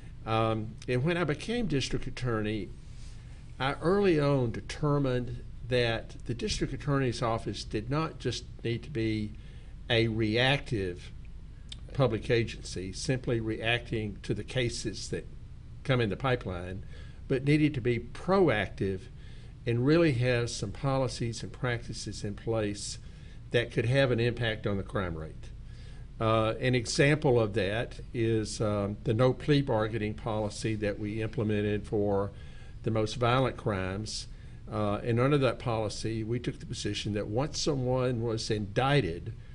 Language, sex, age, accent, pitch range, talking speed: English, male, 60-79, American, 110-130 Hz, 140 wpm